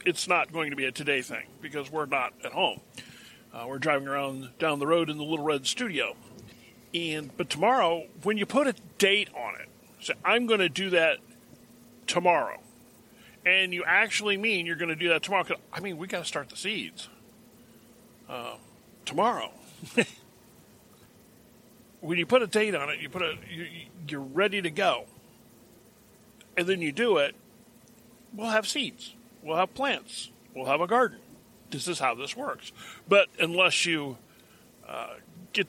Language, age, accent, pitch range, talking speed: English, 50-69, American, 155-200 Hz, 175 wpm